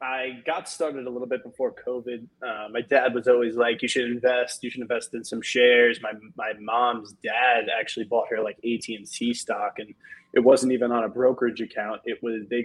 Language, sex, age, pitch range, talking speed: English, male, 20-39, 110-130 Hz, 215 wpm